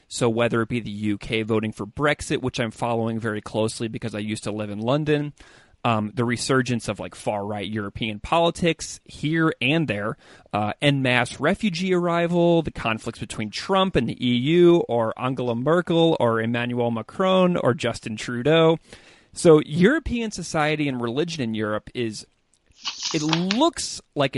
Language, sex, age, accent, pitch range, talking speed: English, male, 30-49, American, 110-155 Hz, 160 wpm